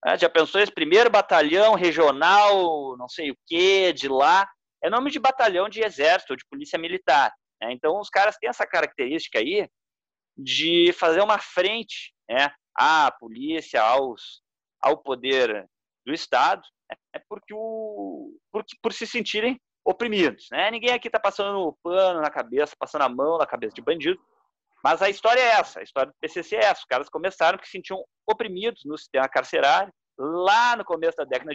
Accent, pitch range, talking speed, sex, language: Brazilian, 145-225 Hz, 175 wpm, male, Portuguese